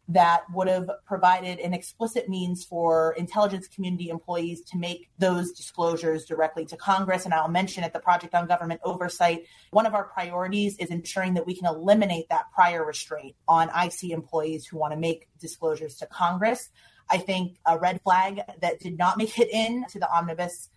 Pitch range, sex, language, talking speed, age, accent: 165-195 Hz, female, English, 185 wpm, 30-49, American